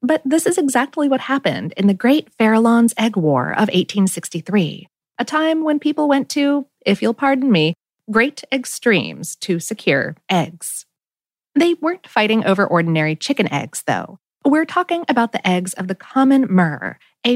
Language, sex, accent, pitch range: English, female, American, 180-270 Hz